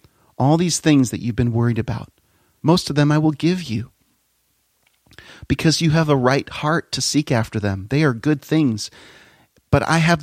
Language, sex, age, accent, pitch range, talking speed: English, male, 40-59, American, 120-155 Hz, 190 wpm